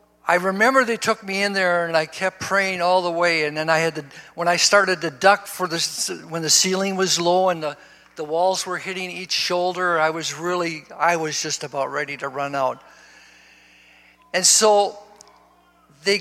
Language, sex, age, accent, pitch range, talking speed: English, male, 60-79, American, 175-220 Hz, 195 wpm